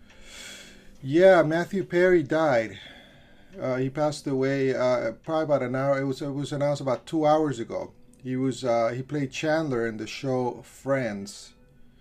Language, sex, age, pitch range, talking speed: English, male, 30-49, 120-140 Hz, 160 wpm